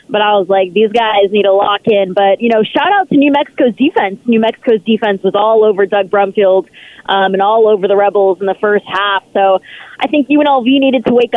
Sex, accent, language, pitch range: female, American, English, 195-235 Hz